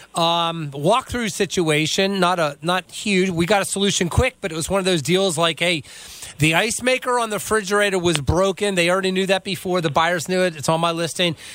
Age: 30-49